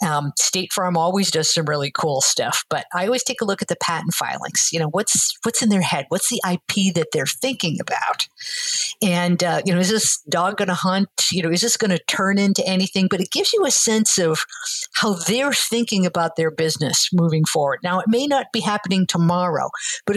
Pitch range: 170-205 Hz